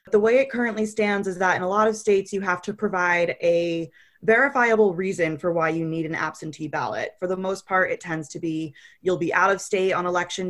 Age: 20-39